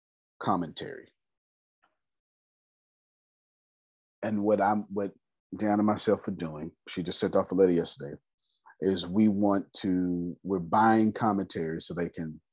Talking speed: 130 wpm